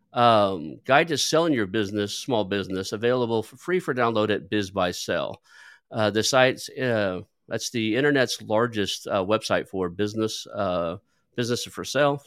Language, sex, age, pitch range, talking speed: English, male, 50-69, 105-130 Hz, 155 wpm